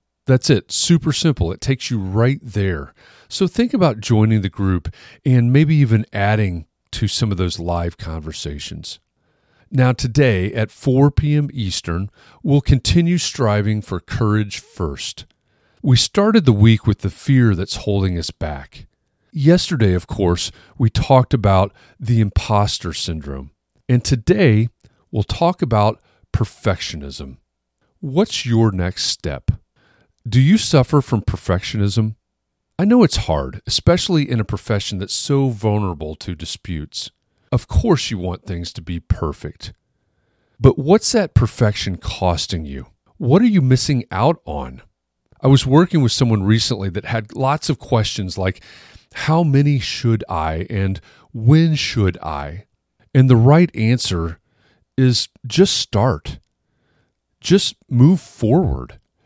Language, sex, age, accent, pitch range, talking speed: English, male, 40-59, American, 95-135 Hz, 135 wpm